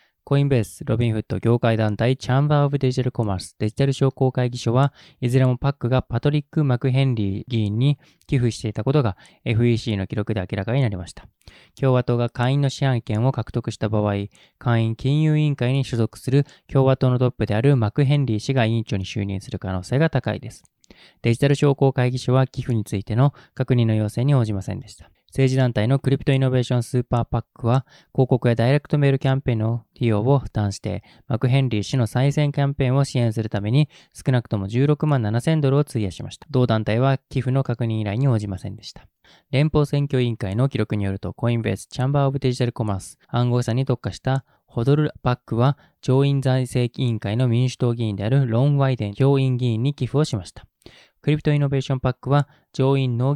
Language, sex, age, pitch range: Japanese, male, 20-39, 115-140 Hz